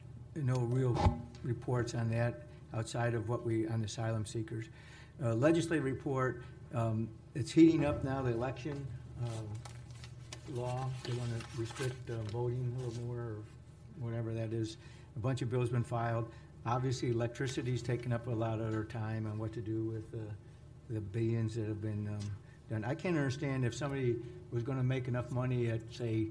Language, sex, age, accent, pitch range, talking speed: English, male, 60-79, American, 110-125 Hz, 175 wpm